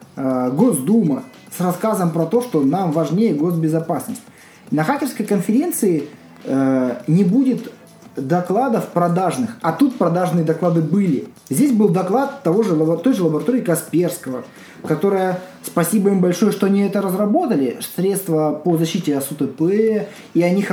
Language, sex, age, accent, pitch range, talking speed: Russian, male, 20-39, native, 165-230 Hz, 135 wpm